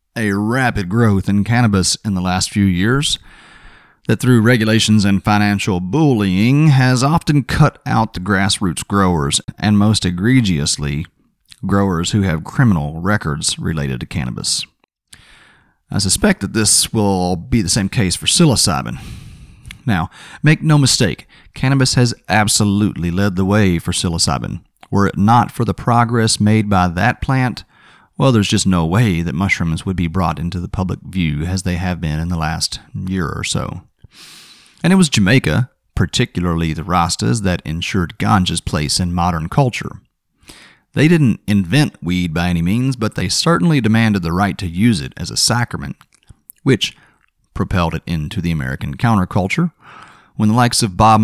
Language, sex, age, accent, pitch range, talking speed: English, male, 30-49, American, 90-115 Hz, 160 wpm